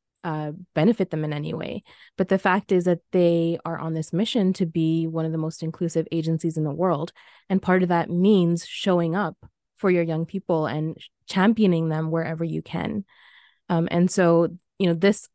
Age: 20-39